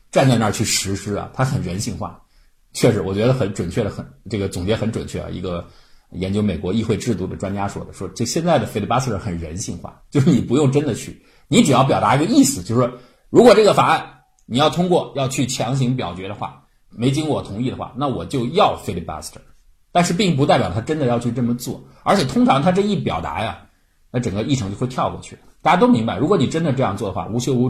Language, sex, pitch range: Chinese, male, 100-135 Hz